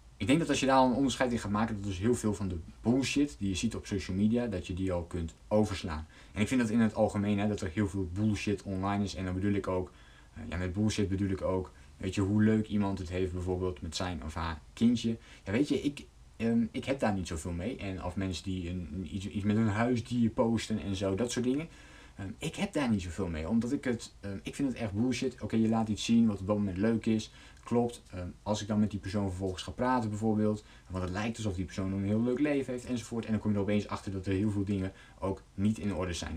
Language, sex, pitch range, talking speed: Dutch, male, 95-115 Hz, 265 wpm